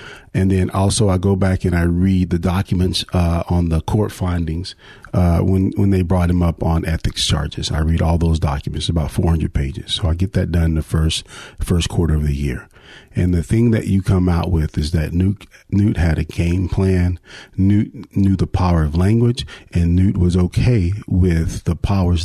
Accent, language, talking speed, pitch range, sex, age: American, English, 200 wpm, 85-100 Hz, male, 40-59